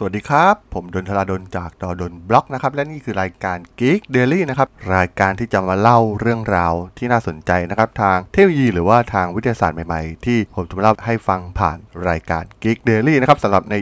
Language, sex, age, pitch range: Thai, male, 20-39, 95-130 Hz